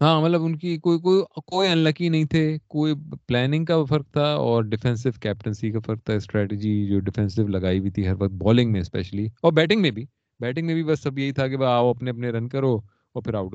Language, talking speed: Urdu, 240 wpm